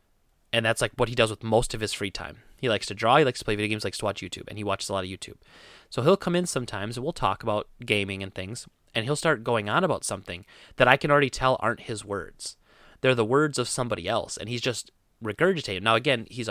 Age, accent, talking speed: 30-49, American, 265 wpm